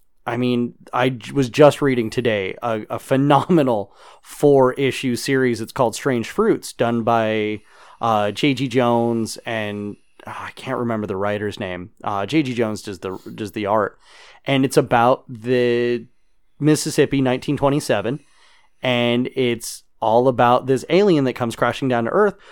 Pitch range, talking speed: 115-140 Hz, 140 wpm